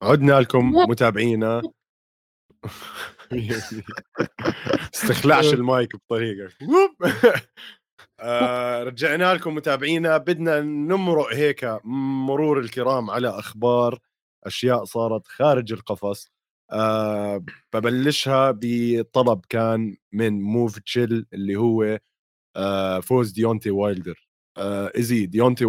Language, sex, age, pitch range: Arabic, male, 30-49, 105-130 Hz